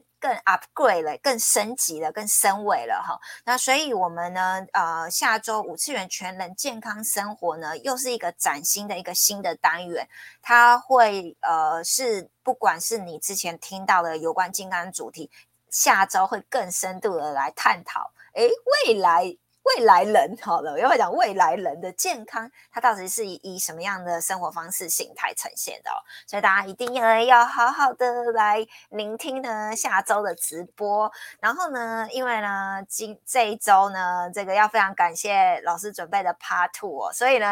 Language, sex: Chinese, female